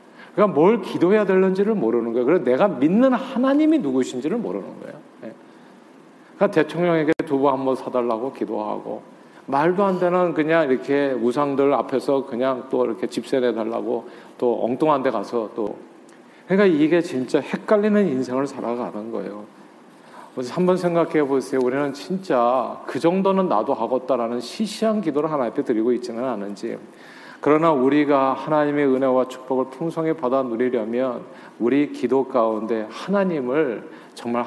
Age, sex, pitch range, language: 40-59, male, 125-160 Hz, Korean